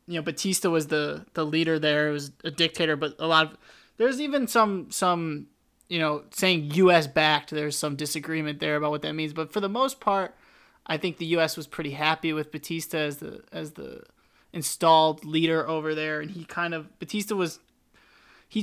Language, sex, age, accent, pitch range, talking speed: English, male, 20-39, American, 150-170 Hz, 200 wpm